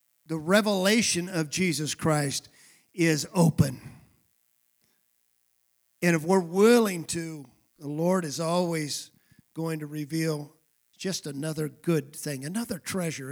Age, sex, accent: 50-69, male, American